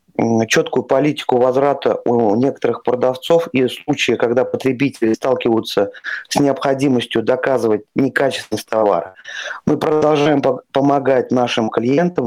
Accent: native